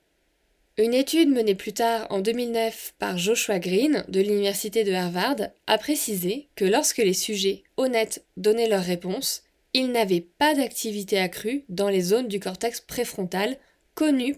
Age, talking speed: 20-39, 150 wpm